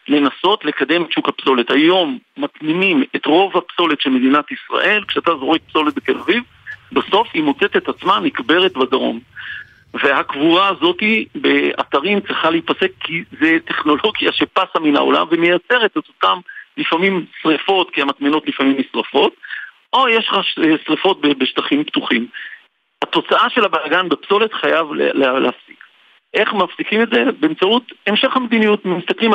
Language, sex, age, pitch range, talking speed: Hebrew, male, 50-69, 160-265 Hz, 140 wpm